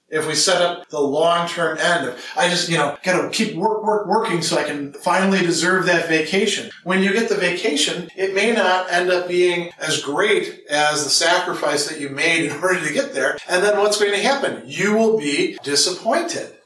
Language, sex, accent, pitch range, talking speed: English, male, American, 155-195 Hz, 215 wpm